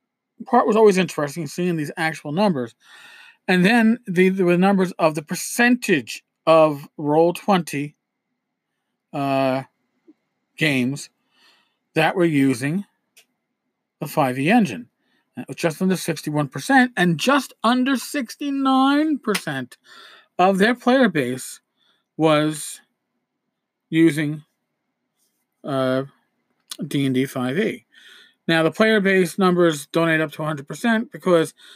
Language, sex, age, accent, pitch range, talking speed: English, male, 40-59, American, 150-220 Hz, 115 wpm